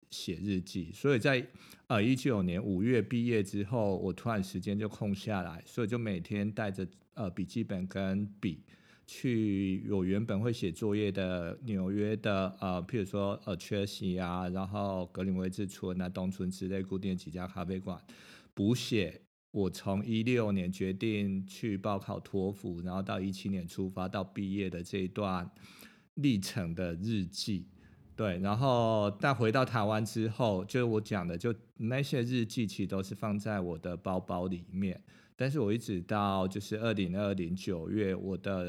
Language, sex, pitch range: Chinese, male, 95-110 Hz